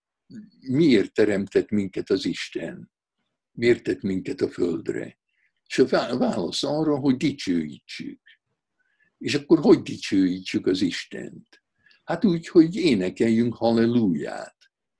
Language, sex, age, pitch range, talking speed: Hungarian, male, 60-79, 110-175 Hz, 110 wpm